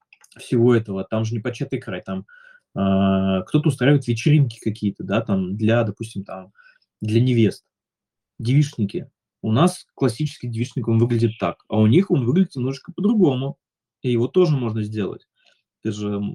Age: 20-39